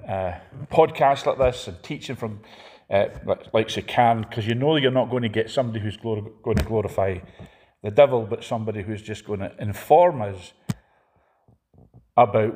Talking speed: 170 wpm